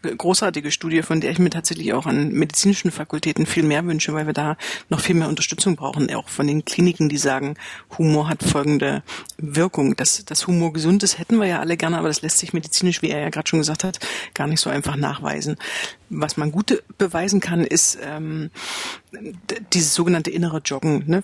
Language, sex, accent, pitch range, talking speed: German, female, German, 155-180 Hz, 200 wpm